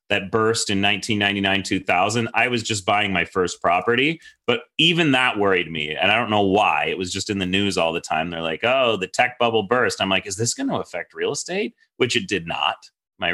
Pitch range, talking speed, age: 95-125 Hz, 235 wpm, 30-49